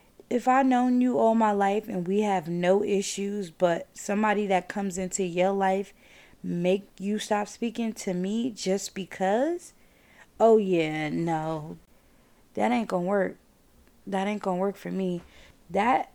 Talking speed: 160 wpm